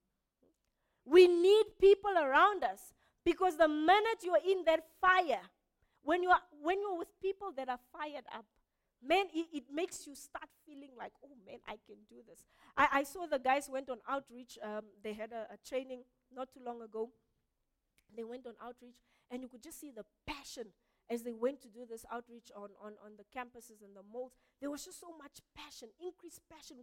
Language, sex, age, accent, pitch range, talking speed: English, female, 20-39, South African, 235-310 Hz, 200 wpm